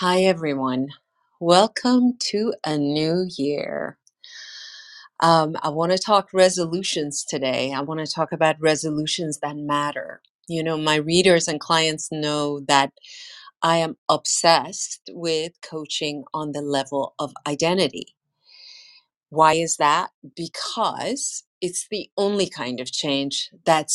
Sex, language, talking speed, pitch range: female, English, 130 wpm, 155-190 Hz